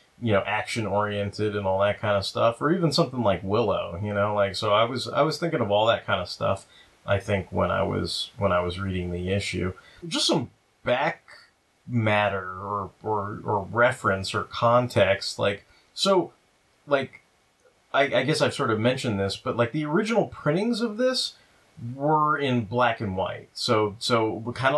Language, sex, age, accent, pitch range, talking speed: English, male, 30-49, American, 100-120 Hz, 190 wpm